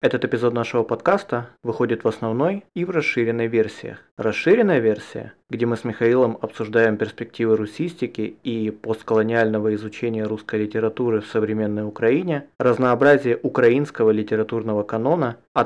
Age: 20-39